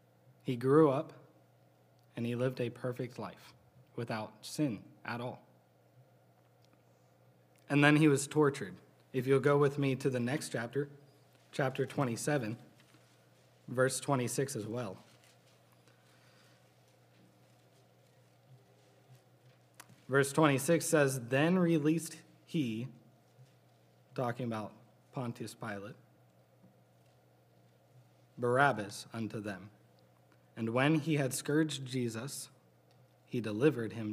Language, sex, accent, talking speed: English, male, American, 95 wpm